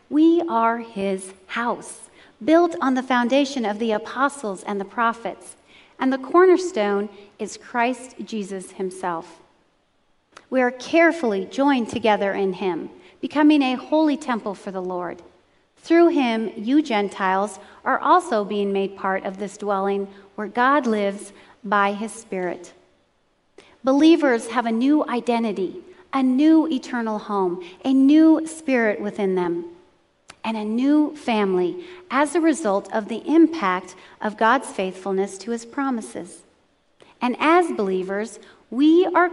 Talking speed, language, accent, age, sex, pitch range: 135 wpm, English, American, 40-59, female, 200-270 Hz